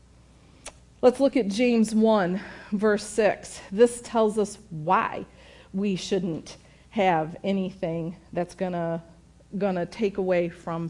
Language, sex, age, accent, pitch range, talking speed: English, female, 50-69, American, 165-220 Hz, 115 wpm